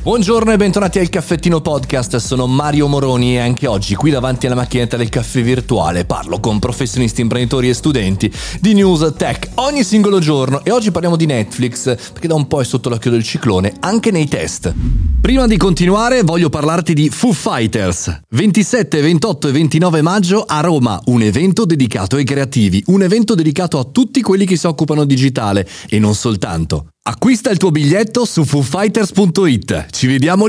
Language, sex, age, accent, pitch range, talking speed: Italian, male, 30-49, native, 105-170 Hz, 175 wpm